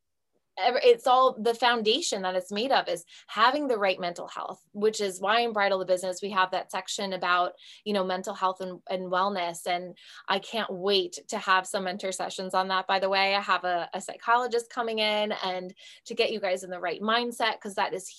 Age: 20-39